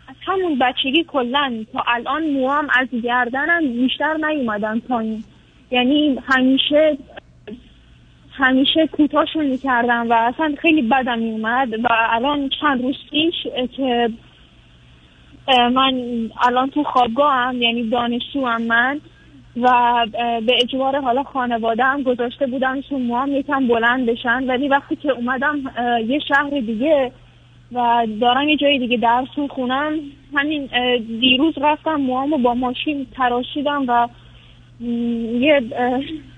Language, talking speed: Persian, 120 wpm